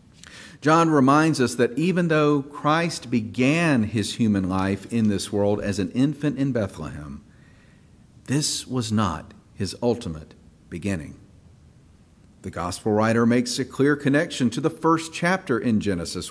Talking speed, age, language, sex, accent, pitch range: 140 wpm, 50-69, English, male, American, 95-150 Hz